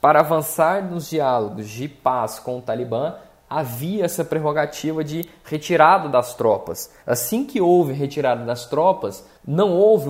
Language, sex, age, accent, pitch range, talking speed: Portuguese, male, 20-39, Brazilian, 140-190 Hz, 145 wpm